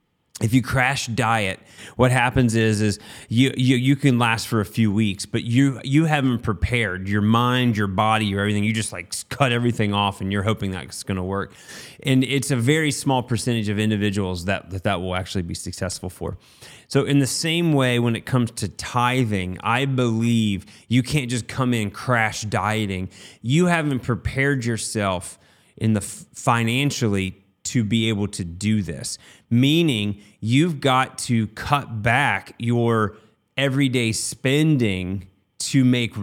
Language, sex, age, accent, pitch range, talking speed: English, male, 30-49, American, 105-130 Hz, 165 wpm